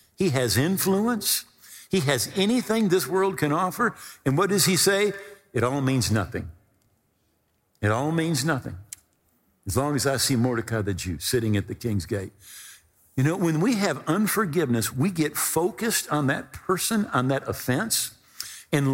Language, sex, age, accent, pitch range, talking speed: English, male, 50-69, American, 115-195 Hz, 165 wpm